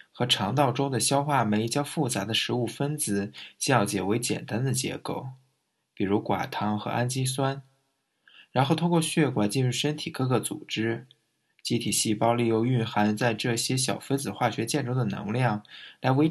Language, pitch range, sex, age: Chinese, 105-140 Hz, male, 20-39